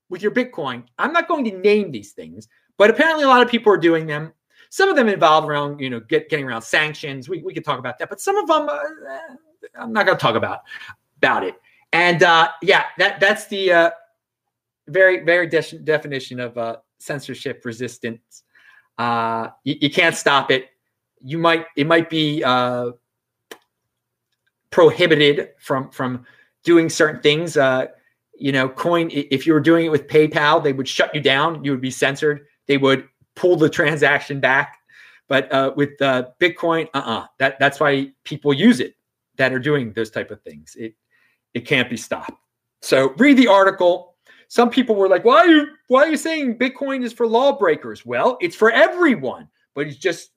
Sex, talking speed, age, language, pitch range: male, 190 wpm, 30-49, English, 135-215 Hz